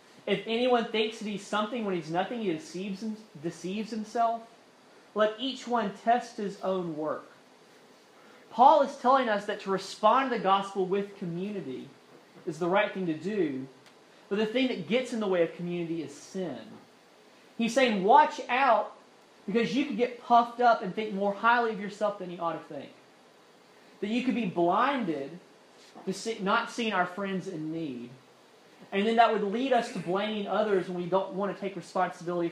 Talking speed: 180 wpm